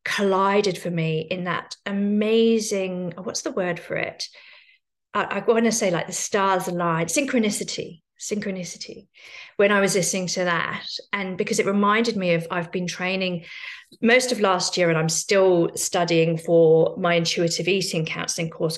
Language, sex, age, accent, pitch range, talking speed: English, female, 40-59, British, 170-210 Hz, 165 wpm